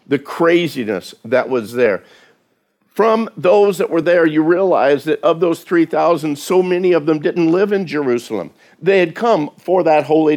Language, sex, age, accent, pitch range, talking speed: English, male, 50-69, American, 155-205 Hz, 175 wpm